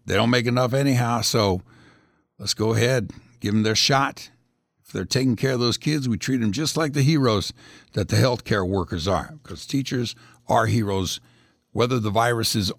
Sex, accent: male, American